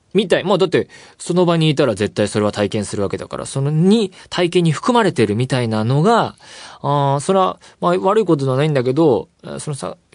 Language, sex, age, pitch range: Japanese, male, 20-39, 105-170 Hz